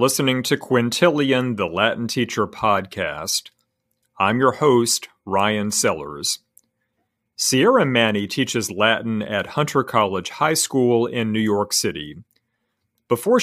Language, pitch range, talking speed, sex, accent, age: English, 110-140 Hz, 115 wpm, male, American, 50-69